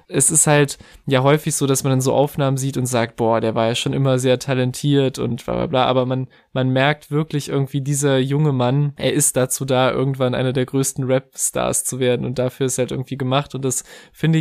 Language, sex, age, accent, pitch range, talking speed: German, male, 20-39, German, 125-140 Hz, 230 wpm